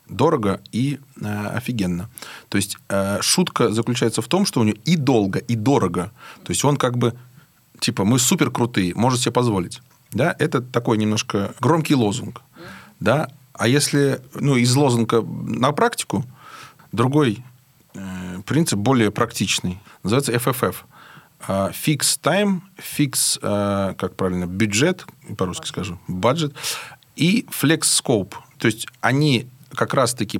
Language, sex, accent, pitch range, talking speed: Russian, male, native, 110-145 Hz, 130 wpm